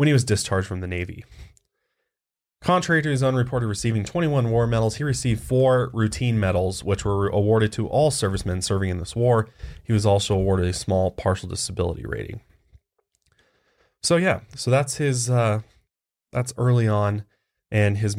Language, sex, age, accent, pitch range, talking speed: English, male, 20-39, American, 95-120 Hz, 170 wpm